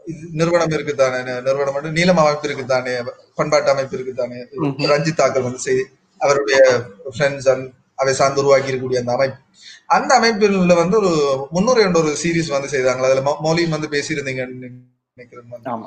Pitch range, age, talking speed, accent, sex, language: 135-190 Hz, 30-49, 115 wpm, native, male, Tamil